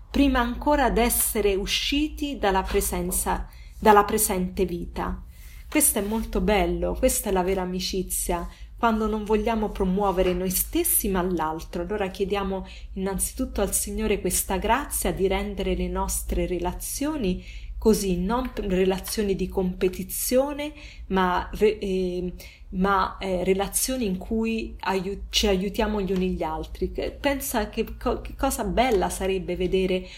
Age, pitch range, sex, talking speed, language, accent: 30-49, 185-215 Hz, female, 125 wpm, Italian, native